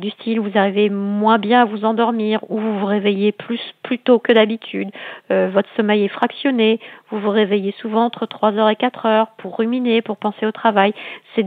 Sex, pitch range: female, 200-230 Hz